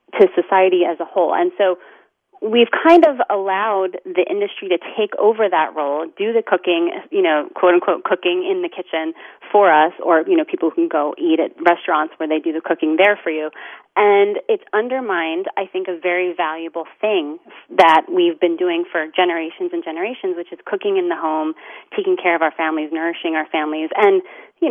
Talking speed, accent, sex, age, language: 195 wpm, American, female, 30-49, English